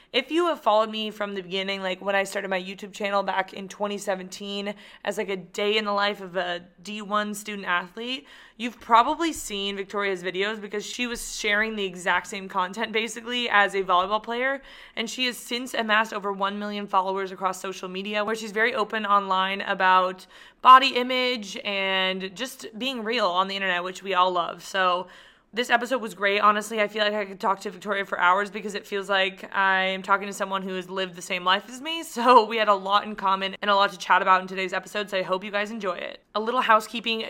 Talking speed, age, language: 220 wpm, 20-39, English